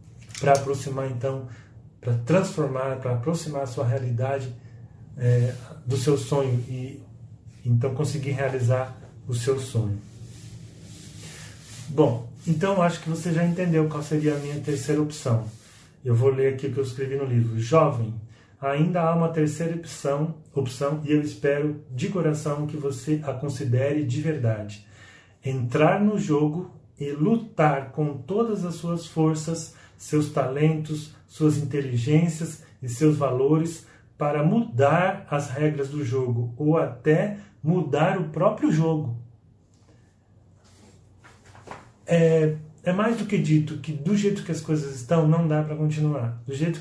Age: 40-59